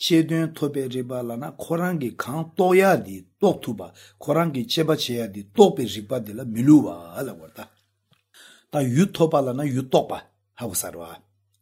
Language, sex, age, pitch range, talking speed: English, male, 60-79, 110-150 Hz, 50 wpm